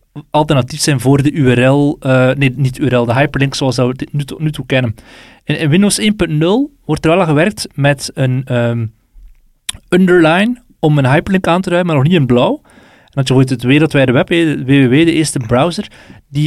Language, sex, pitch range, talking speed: Dutch, male, 130-165 Hz, 205 wpm